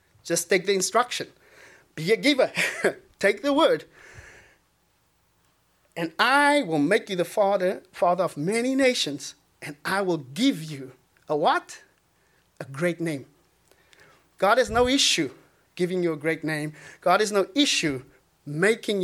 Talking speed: 140 wpm